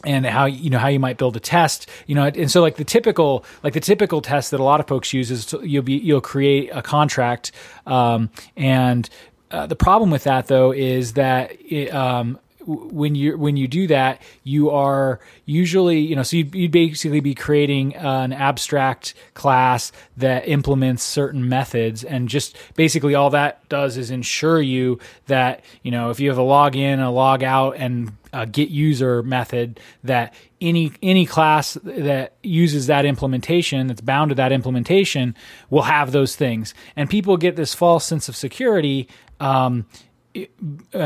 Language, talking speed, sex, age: English, 180 wpm, male, 20-39